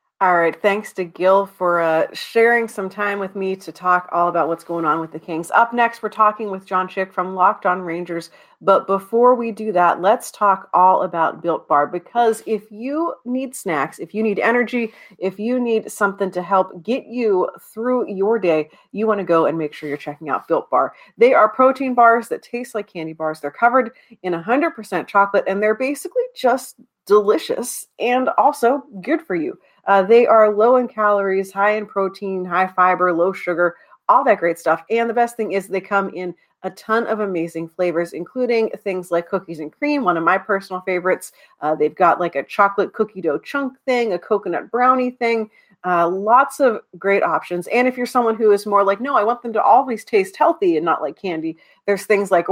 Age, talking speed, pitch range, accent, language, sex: 40-59, 210 wpm, 175-235 Hz, American, English, female